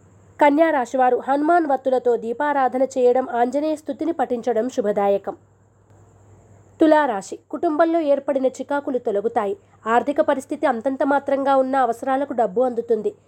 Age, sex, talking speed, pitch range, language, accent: 20-39, female, 100 wpm, 225-290 Hz, Telugu, native